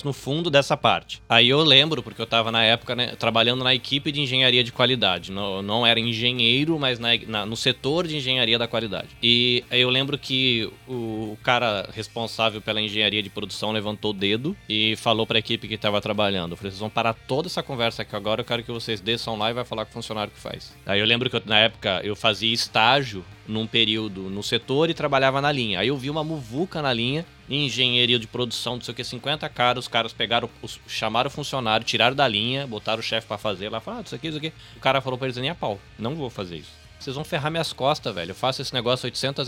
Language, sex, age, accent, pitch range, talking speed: Portuguese, male, 20-39, Brazilian, 110-140 Hz, 235 wpm